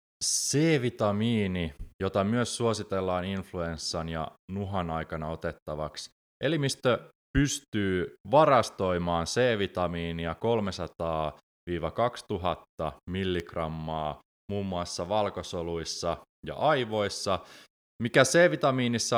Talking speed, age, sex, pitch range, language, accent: 70 wpm, 20-39, male, 85-115 Hz, Finnish, native